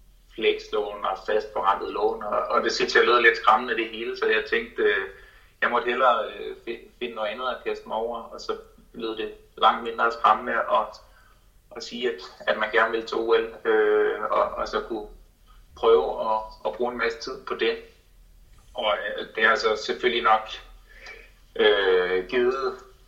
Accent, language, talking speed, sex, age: native, Danish, 175 wpm, male, 30-49